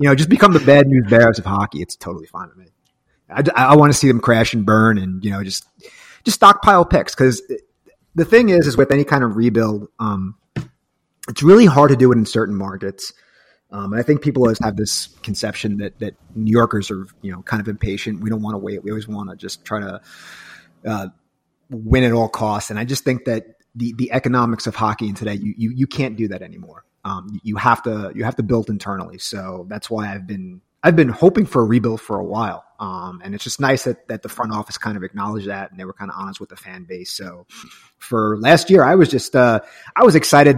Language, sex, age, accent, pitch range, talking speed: English, male, 30-49, American, 105-140 Hz, 245 wpm